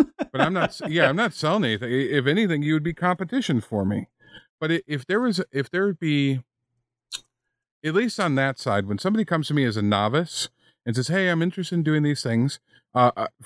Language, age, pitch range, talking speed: English, 40-59, 115-145 Hz, 210 wpm